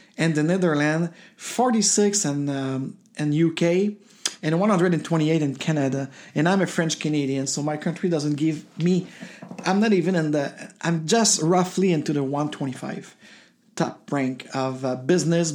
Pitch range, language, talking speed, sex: 150-190 Hz, English, 150 wpm, male